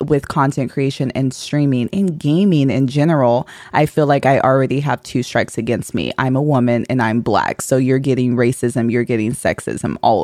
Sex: female